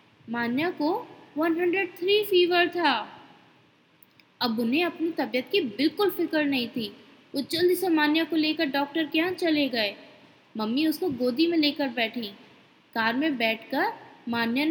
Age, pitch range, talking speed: 20-39, 245-335 Hz, 145 wpm